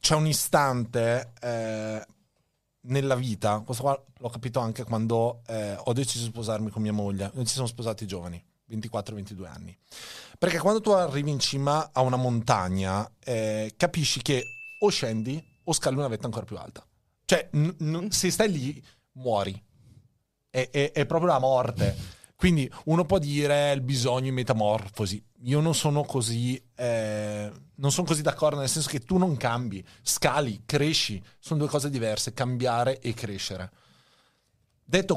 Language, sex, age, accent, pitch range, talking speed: Italian, male, 30-49, native, 115-150 Hz, 160 wpm